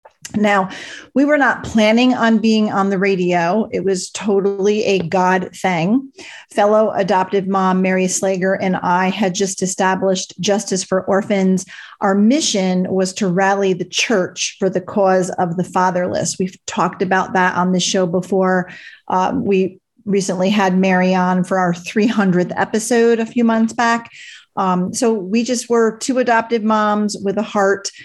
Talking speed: 160 wpm